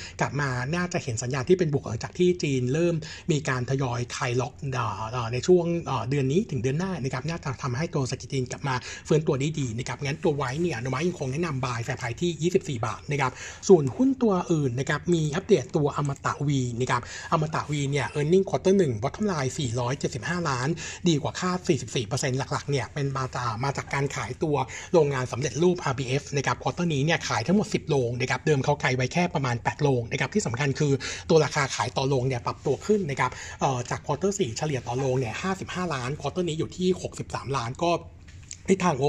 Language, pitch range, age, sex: Thai, 130-170 Hz, 60-79, male